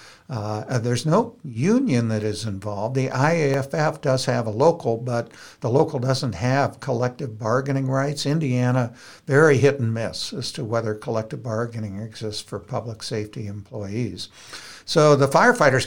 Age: 60-79